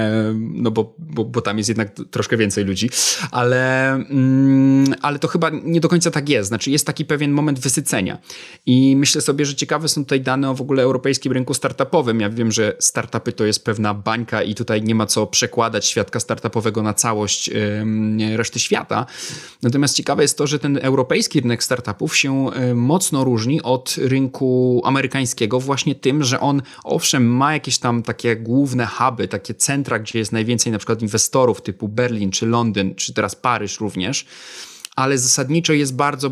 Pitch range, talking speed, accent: 115-140 Hz, 175 wpm, native